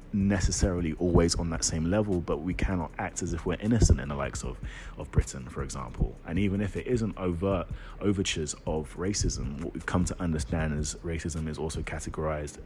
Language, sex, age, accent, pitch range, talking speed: English, male, 30-49, British, 80-95 Hz, 195 wpm